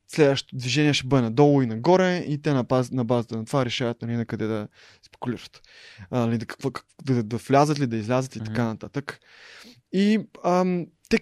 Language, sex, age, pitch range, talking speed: Bulgarian, male, 20-39, 125-155 Hz, 205 wpm